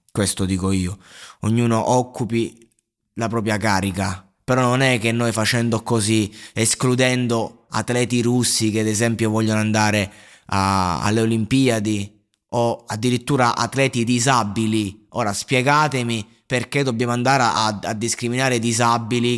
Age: 20-39